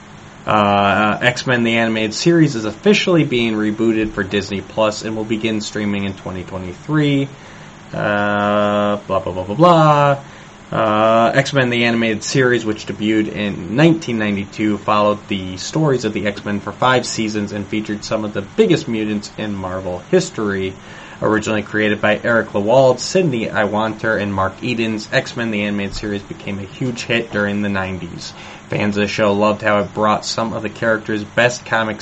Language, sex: English, male